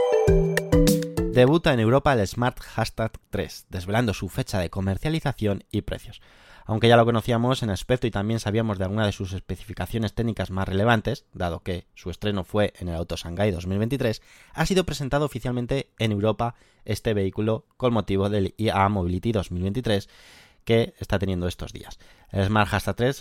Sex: male